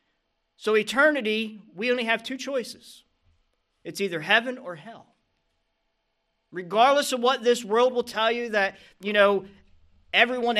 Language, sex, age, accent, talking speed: English, male, 40-59, American, 135 wpm